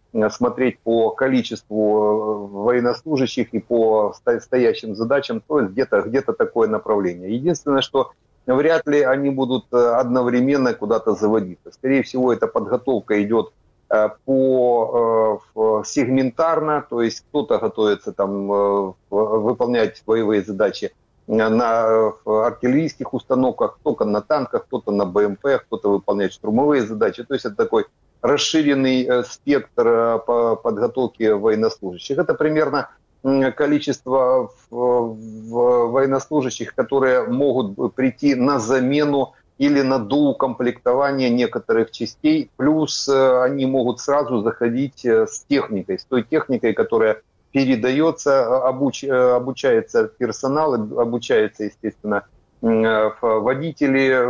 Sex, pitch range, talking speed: male, 110-135 Hz, 100 wpm